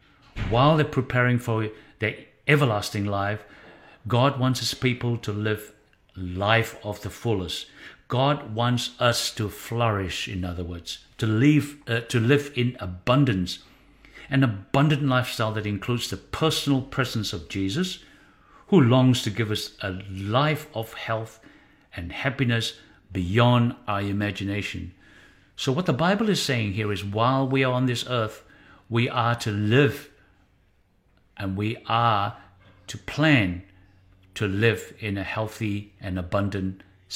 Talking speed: 135 wpm